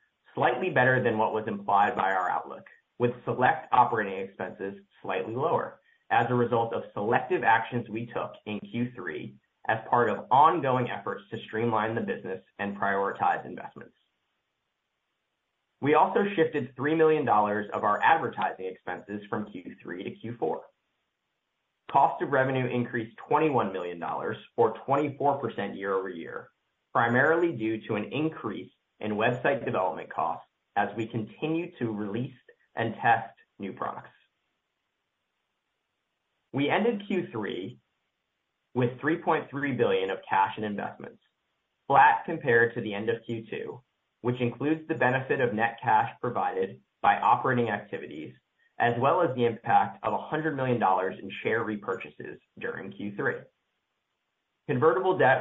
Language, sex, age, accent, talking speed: English, male, 20-39, American, 130 wpm